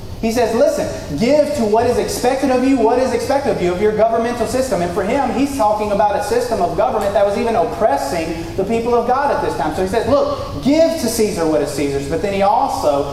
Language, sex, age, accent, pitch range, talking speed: English, male, 30-49, American, 155-225 Hz, 245 wpm